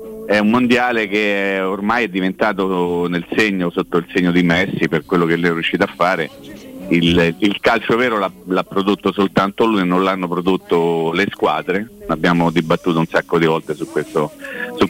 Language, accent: Italian, native